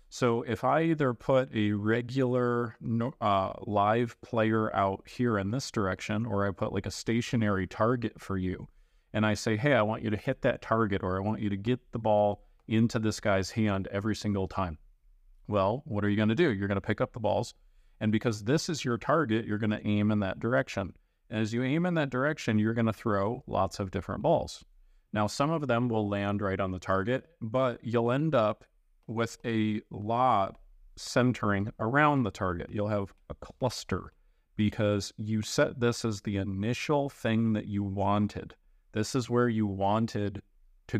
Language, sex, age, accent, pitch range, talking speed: English, male, 40-59, American, 100-115 Hz, 195 wpm